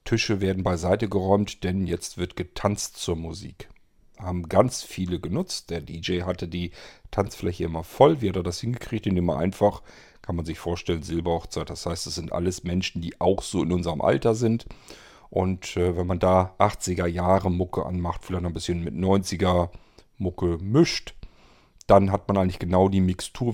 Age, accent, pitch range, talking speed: 40-59, German, 90-115 Hz, 180 wpm